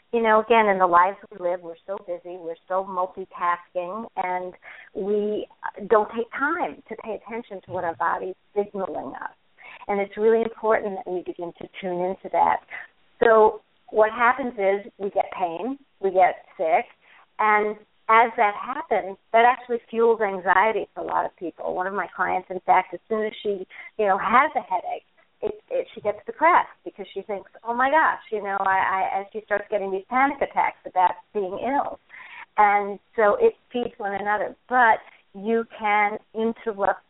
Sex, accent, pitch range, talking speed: female, American, 185-225 Hz, 175 wpm